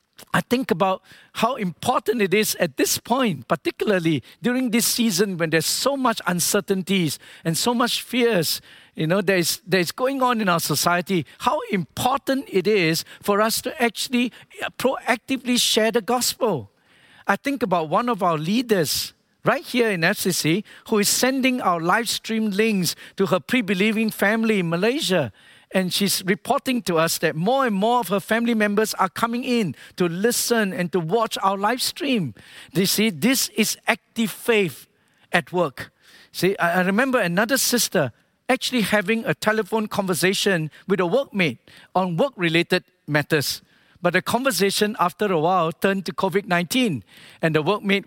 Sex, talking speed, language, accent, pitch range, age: male, 160 wpm, English, Malaysian, 170-225 Hz, 50-69